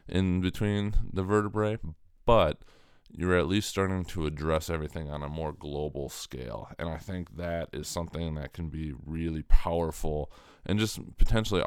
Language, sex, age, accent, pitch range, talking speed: English, male, 20-39, American, 75-85 Hz, 160 wpm